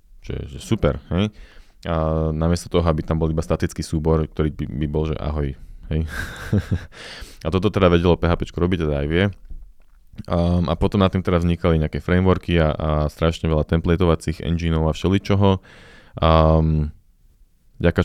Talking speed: 160 wpm